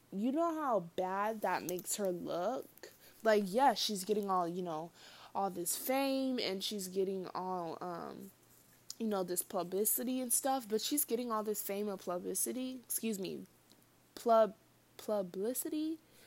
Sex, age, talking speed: female, 20-39, 155 wpm